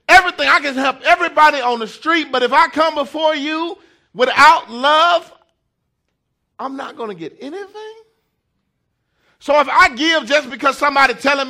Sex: male